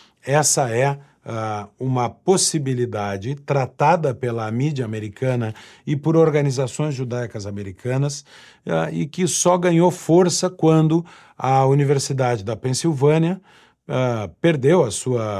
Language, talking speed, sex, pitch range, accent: Portuguese, 100 wpm, male, 110-145 Hz, Brazilian